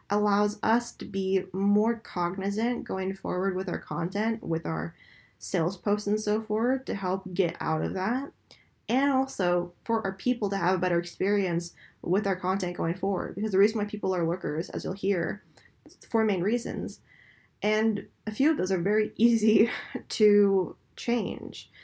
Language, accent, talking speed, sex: English, American, 175 wpm, female